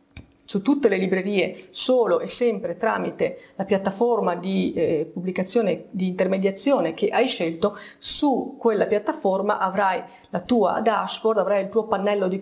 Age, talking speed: 30-49, 145 wpm